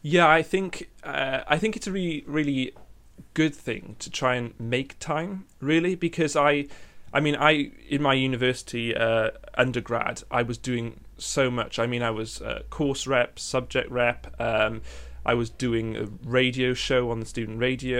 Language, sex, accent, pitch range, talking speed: English, male, British, 115-140 Hz, 175 wpm